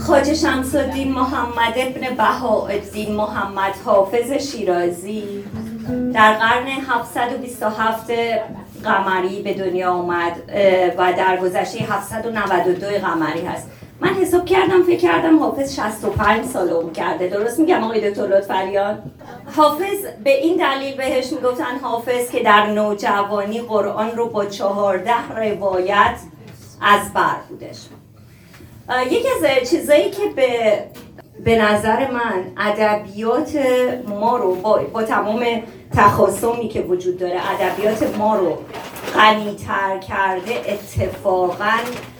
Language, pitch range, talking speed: Persian, 195-245 Hz, 110 wpm